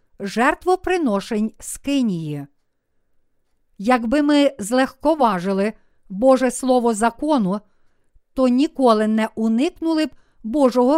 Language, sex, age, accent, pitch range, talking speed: Ukrainian, female, 50-69, native, 220-280 Hz, 75 wpm